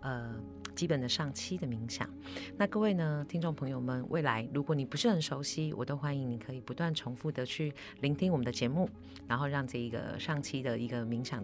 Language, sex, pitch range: Chinese, female, 125-160 Hz